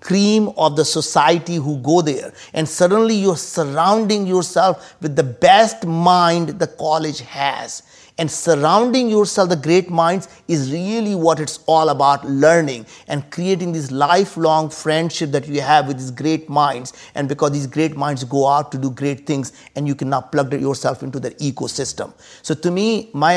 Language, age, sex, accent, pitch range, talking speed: English, 50-69, male, Indian, 150-185 Hz, 170 wpm